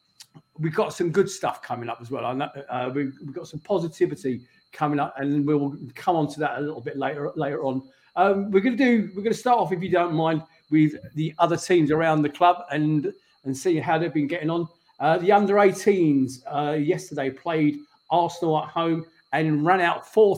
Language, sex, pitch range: English, male, 145-180 Hz